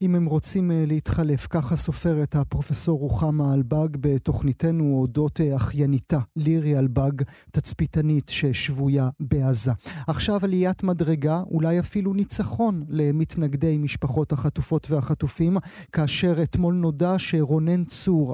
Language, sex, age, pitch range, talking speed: Hebrew, male, 30-49, 150-175 Hz, 105 wpm